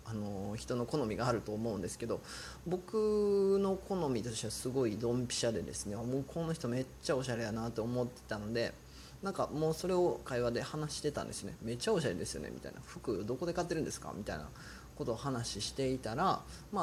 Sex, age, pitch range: male, 20-39, 110-155 Hz